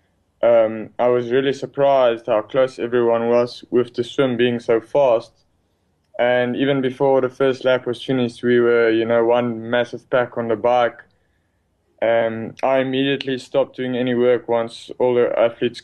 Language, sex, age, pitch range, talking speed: English, male, 20-39, 115-125 Hz, 165 wpm